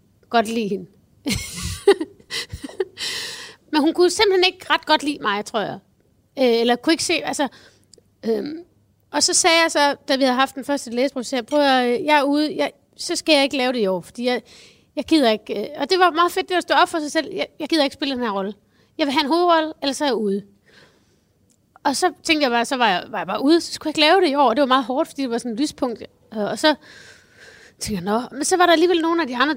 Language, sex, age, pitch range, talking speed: Danish, female, 30-49, 235-315 Hz, 255 wpm